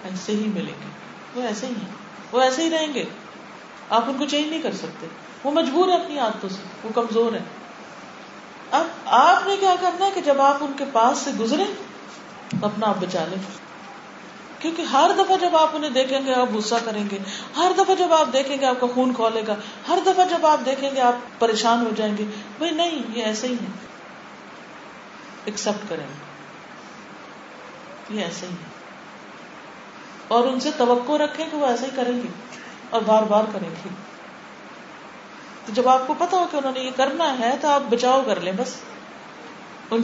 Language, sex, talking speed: Urdu, female, 175 wpm